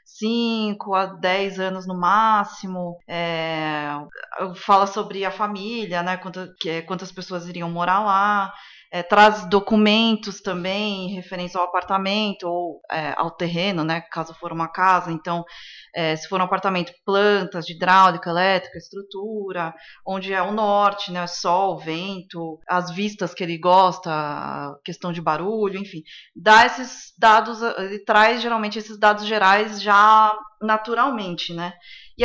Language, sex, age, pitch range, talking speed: Portuguese, female, 20-39, 180-215 Hz, 145 wpm